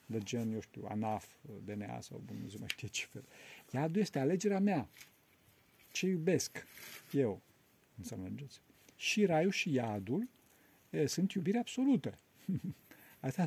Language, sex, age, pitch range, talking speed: Romanian, male, 50-69, 110-175 Hz, 130 wpm